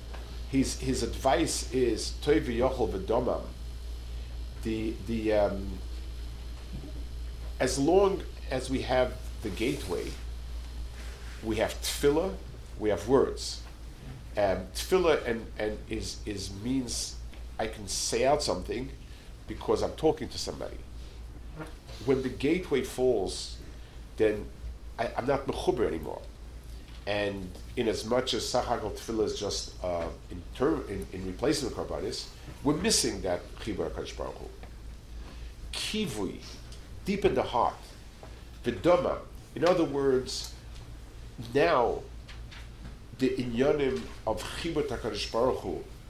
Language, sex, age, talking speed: English, male, 50-69, 110 wpm